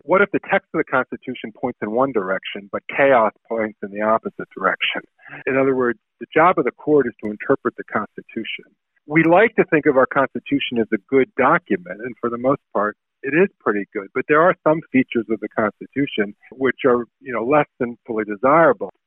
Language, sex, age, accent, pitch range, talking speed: English, male, 50-69, American, 110-140 Hz, 210 wpm